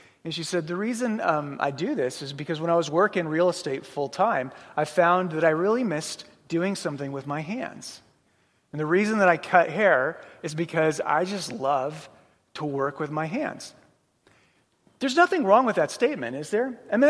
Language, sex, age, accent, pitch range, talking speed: English, male, 30-49, American, 160-220 Hz, 205 wpm